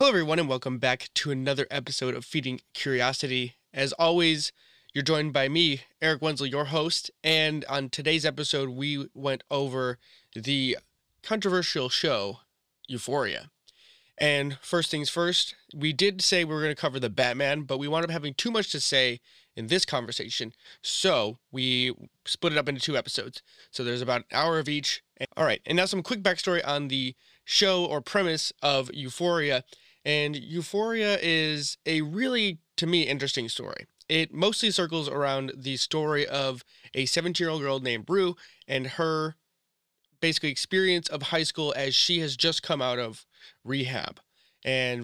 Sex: male